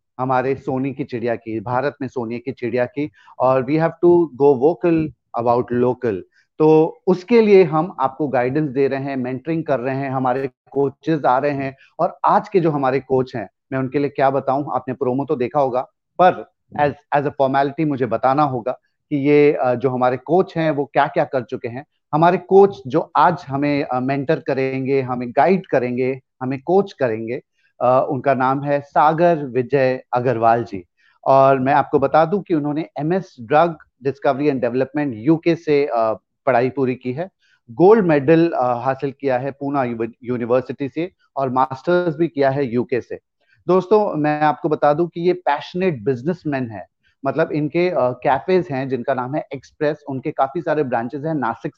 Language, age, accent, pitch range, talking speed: Hindi, 30-49, native, 130-155 Hz, 175 wpm